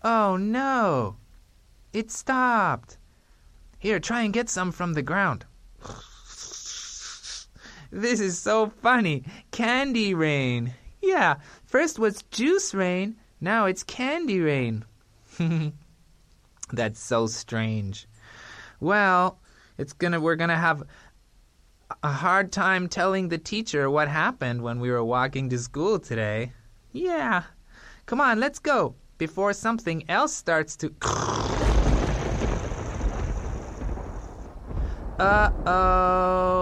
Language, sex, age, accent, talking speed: English, male, 20-39, American, 105 wpm